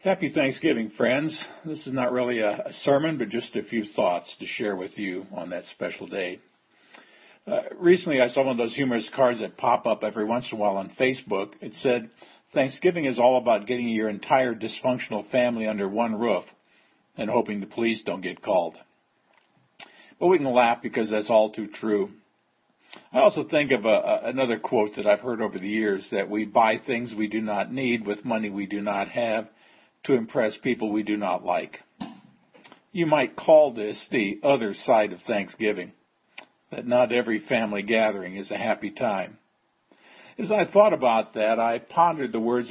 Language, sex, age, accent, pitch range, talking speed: English, male, 50-69, American, 110-130 Hz, 185 wpm